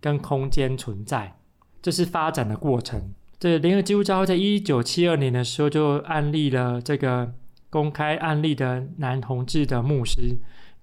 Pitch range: 125-150 Hz